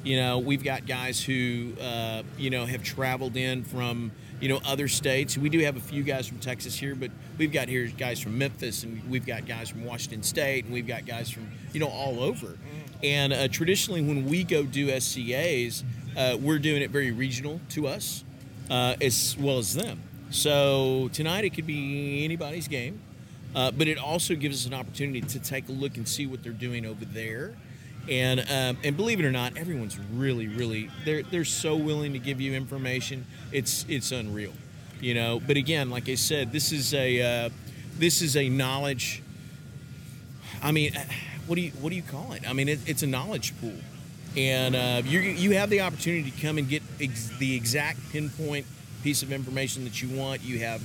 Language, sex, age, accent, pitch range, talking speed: English, male, 40-59, American, 125-145 Hz, 200 wpm